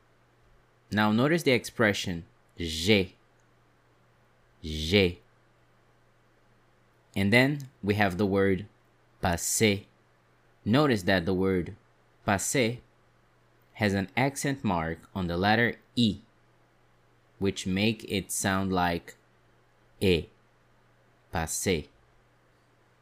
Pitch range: 90-120 Hz